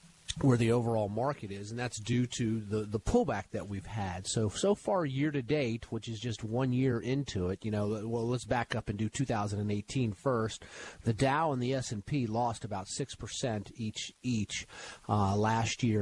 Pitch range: 105-135 Hz